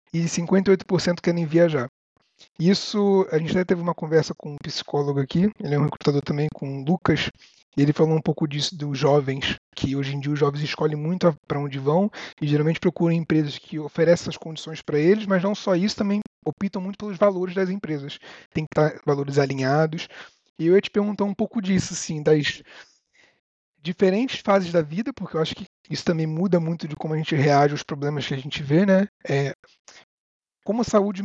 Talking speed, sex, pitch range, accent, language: 205 wpm, male, 150-185 Hz, Brazilian, Portuguese